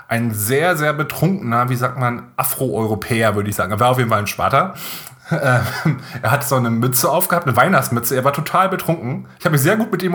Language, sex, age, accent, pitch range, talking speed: German, male, 30-49, German, 115-150 Hz, 225 wpm